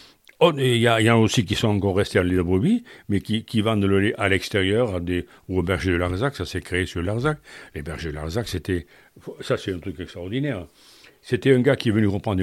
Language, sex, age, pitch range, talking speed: French, male, 60-79, 95-130 Hz, 230 wpm